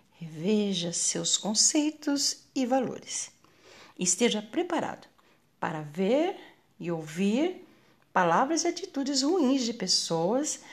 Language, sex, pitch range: Portuguese, female, 185-305 Hz